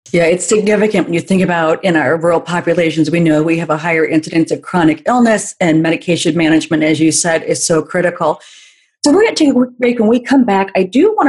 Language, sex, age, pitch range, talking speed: English, female, 40-59, 165-225 Hz, 235 wpm